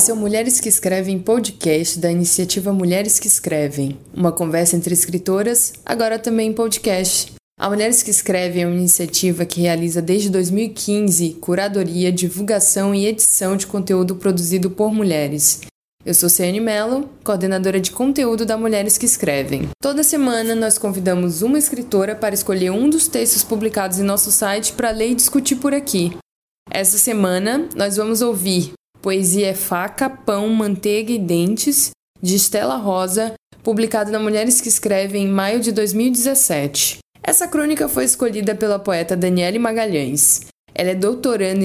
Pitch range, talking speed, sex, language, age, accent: 180-225 Hz, 150 wpm, female, Portuguese, 20-39, Brazilian